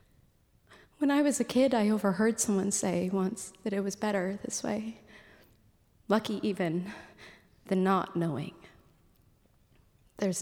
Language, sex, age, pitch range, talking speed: English, female, 30-49, 185-230 Hz, 125 wpm